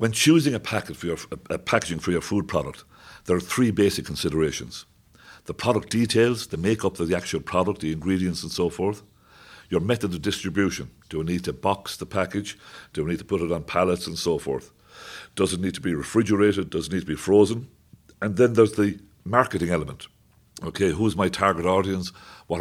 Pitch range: 85-110 Hz